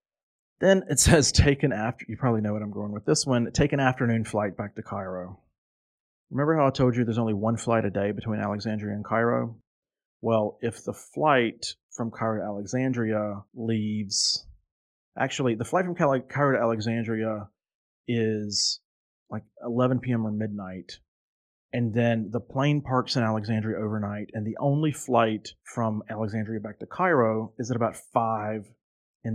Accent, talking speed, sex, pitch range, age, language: American, 170 wpm, male, 105-130 Hz, 30-49, English